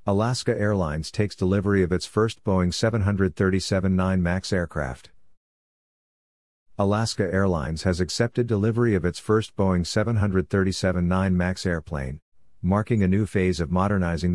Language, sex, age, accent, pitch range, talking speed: English, male, 50-69, American, 85-100 Hz, 120 wpm